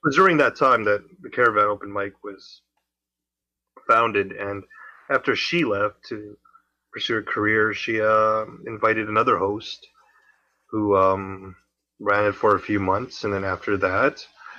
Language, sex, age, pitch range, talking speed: English, male, 20-39, 100-110 Hz, 150 wpm